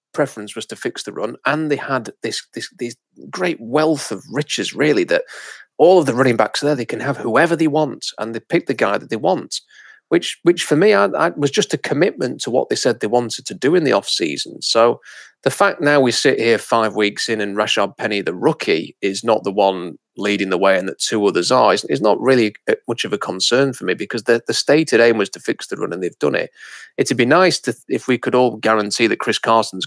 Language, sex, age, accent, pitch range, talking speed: English, male, 30-49, British, 105-140 Hz, 245 wpm